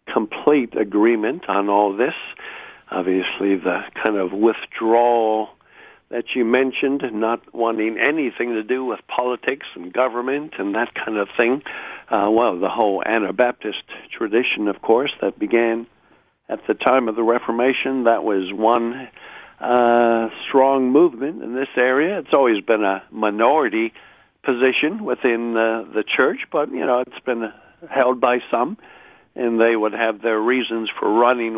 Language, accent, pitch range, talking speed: English, American, 110-125 Hz, 150 wpm